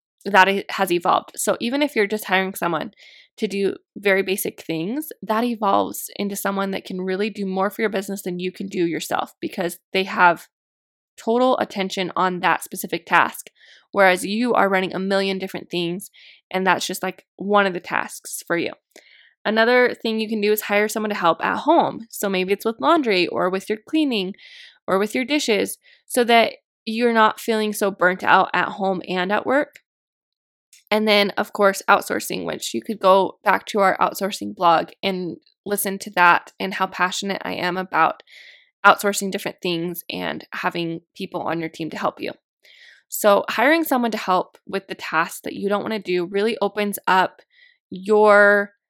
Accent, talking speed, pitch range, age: American, 185 wpm, 185-220 Hz, 20-39